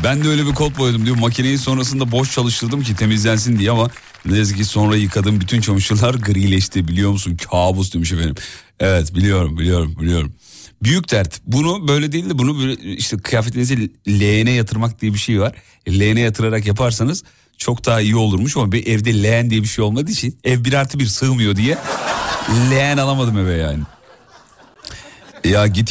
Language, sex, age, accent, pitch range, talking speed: Turkish, male, 40-59, native, 100-130 Hz, 175 wpm